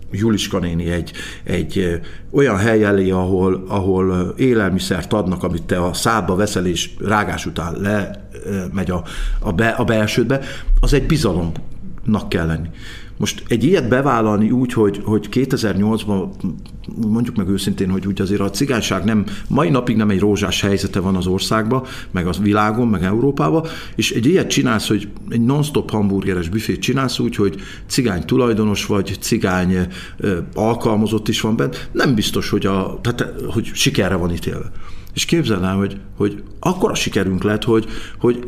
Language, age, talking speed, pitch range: Hungarian, 50-69, 155 wpm, 95-120 Hz